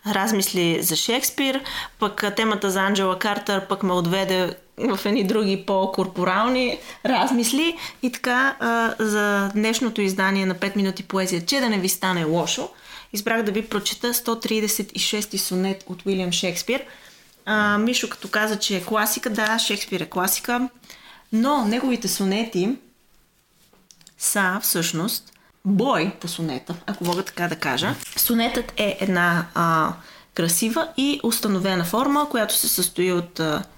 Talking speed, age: 135 wpm, 30-49